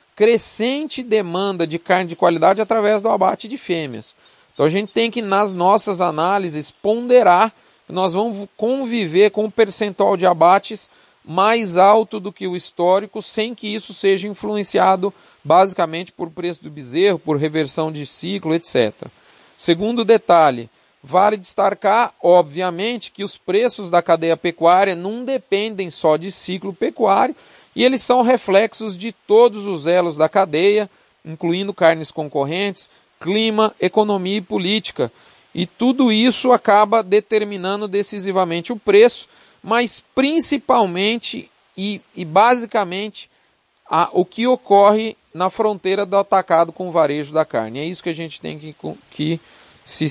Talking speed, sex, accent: 145 wpm, male, Brazilian